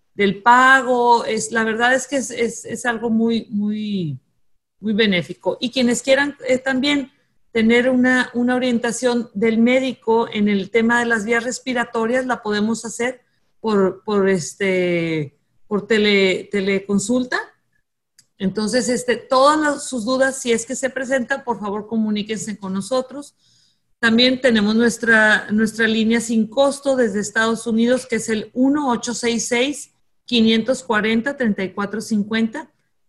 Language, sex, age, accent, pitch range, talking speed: Spanish, female, 40-59, Mexican, 210-250 Hz, 130 wpm